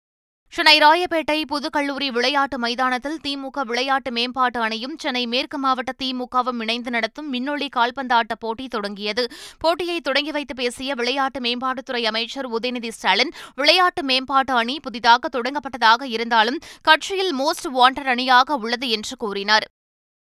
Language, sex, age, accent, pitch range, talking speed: Tamil, female, 20-39, native, 240-280 Hz, 120 wpm